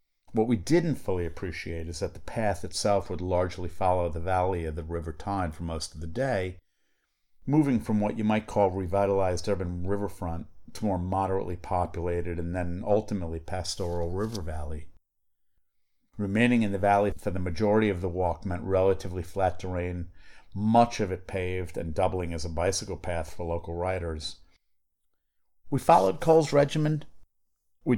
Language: English